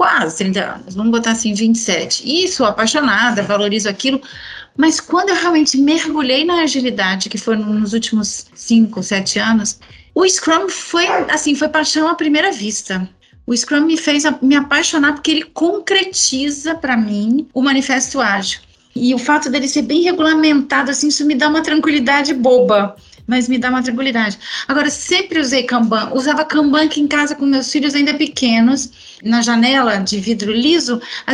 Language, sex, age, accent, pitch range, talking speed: Portuguese, female, 30-49, Brazilian, 220-285 Hz, 165 wpm